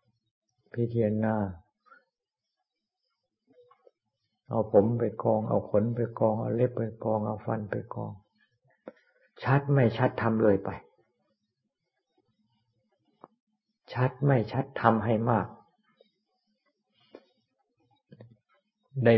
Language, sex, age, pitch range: Thai, male, 60-79, 105-125 Hz